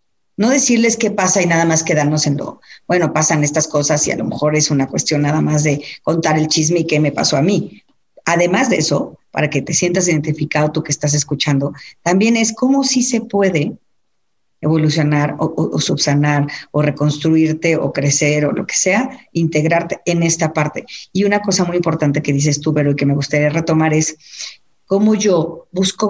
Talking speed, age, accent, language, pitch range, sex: 195 wpm, 40-59, Mexican, Spanish, 150-190 Hz, female